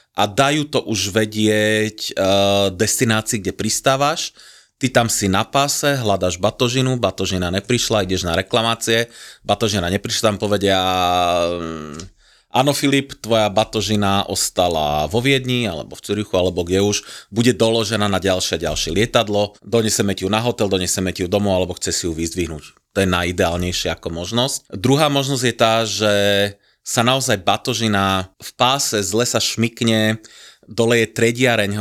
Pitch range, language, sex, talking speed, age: 95-115 Hz, Slovak, male, 145 wpm, 30-49